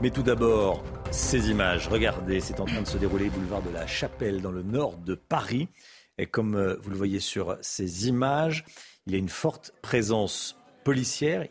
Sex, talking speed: male, 190 wpm